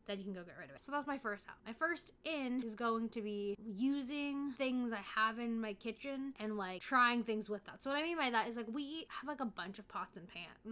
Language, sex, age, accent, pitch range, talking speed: English, female, 10-29, American, 205-260 Hz, 280 wpm